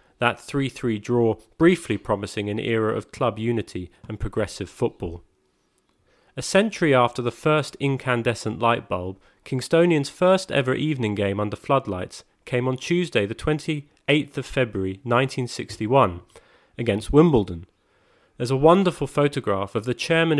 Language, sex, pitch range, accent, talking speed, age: English, male, 105-140 Hz, British, 145 wpm, 30-49